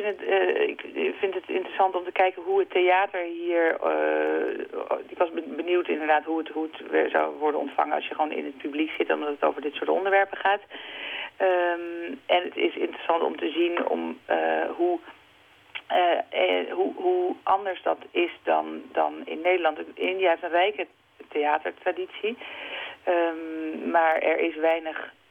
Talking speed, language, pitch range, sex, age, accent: 155 wpm, Dutch, 155-195 Hz, female, 40-59, Dutch